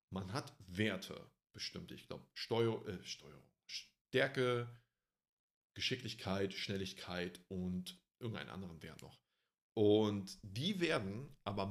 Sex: male